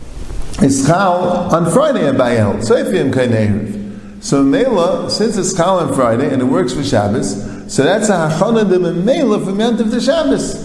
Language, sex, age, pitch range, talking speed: English, male, 50-69, 125-200 Hz, 180 wpm